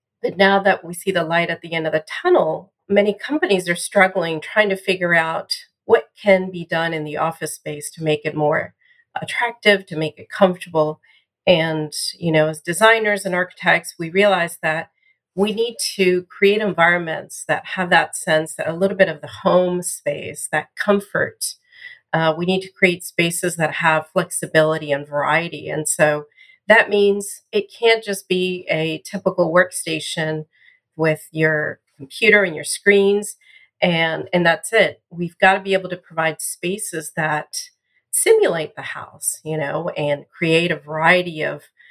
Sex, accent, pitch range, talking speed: female, American, 160-200 Hz, 170 wpm